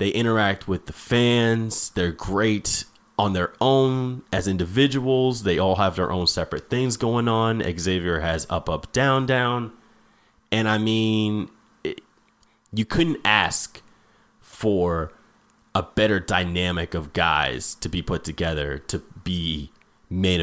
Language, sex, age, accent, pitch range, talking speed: English, male, 30-49, American, 85-115 Hz, 140 wpm